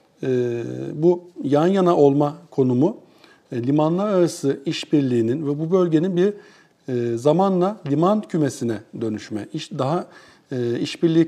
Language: Turkish